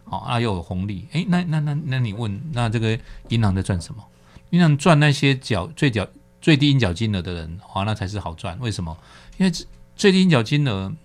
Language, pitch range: Chinese, 95-145 Hz